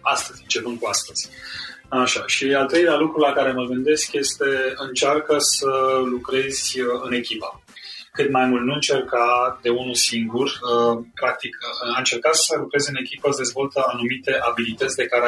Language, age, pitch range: Romanian, 30-49, 120-135 Hz